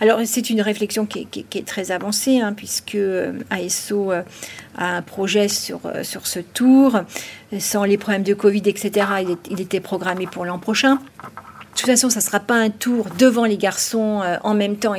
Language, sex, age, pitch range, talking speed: French, female, 50-69, 200-240 Hz, 200 wpm